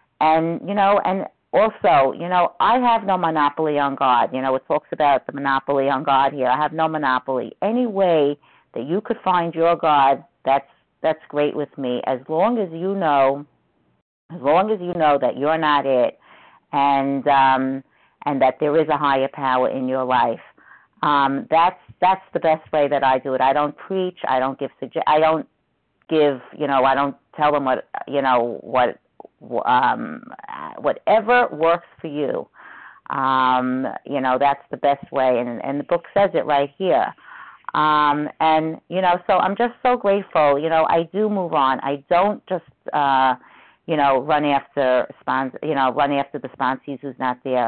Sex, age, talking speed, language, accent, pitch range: female, 50-69, 185 wpm, English, American, 135-170 Hz